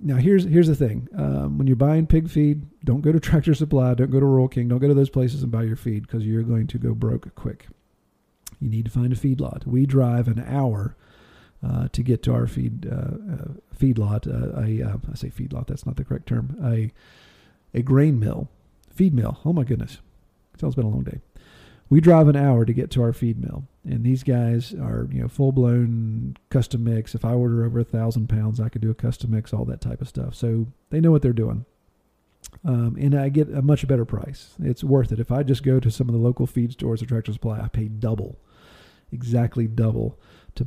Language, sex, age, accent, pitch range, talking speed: English, male, 40-59, American, 115-140 Hz, 230 wpm